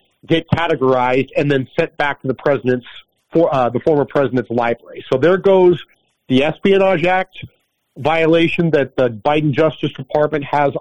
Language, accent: English, American